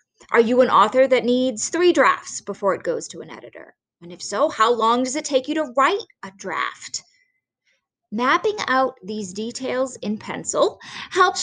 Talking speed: 180 wpm